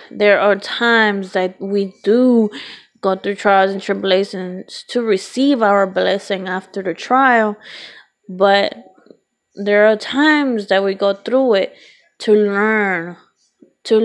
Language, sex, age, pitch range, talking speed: English, female, 20-39, 200-250 Hz, 130 wpm